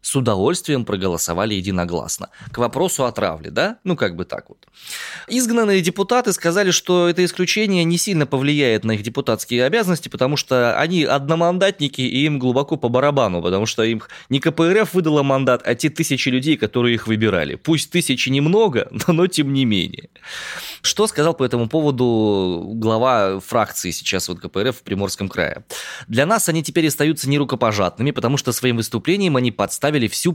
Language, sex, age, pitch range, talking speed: Russian, male, 20-39, 110-165 Hz, 165 wpm